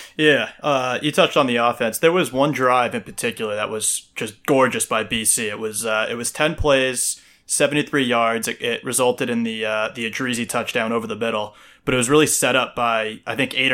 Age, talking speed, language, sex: 20-39, 220 wpm, English, male